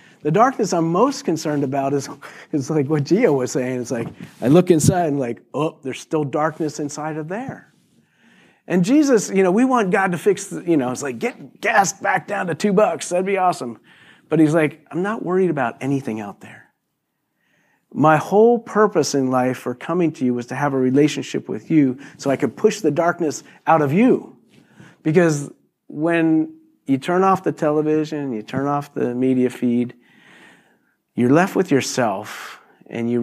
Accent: American